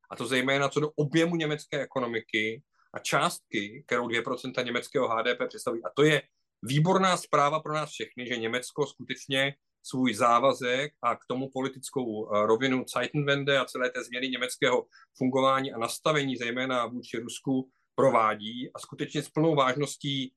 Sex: male